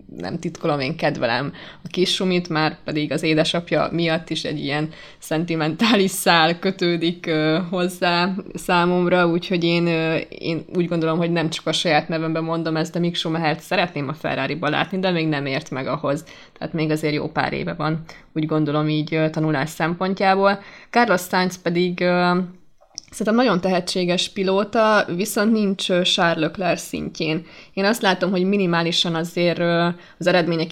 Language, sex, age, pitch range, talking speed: Hungarian, female, 20-39, 160-185 Hz, 155 wpm